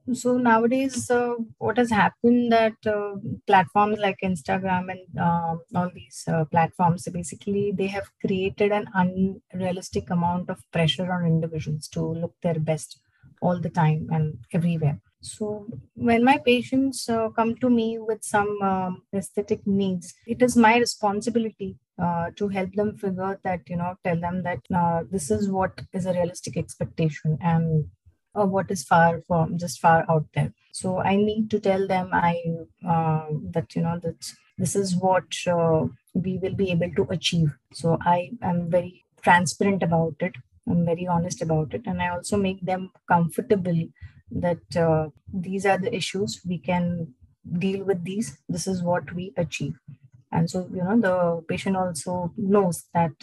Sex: female